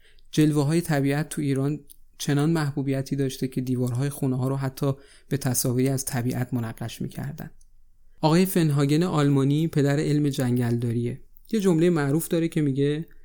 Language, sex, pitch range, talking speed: Persian, male, 125-150 Hz, 150 wpm